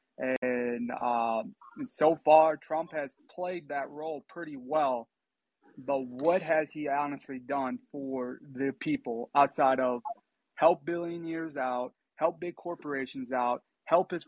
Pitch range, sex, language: 125-155 Hz, male, English